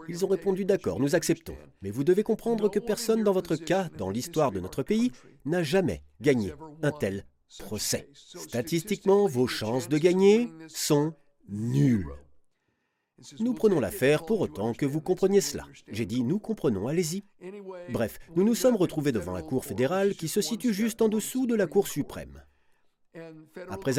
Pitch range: 135-195 Hz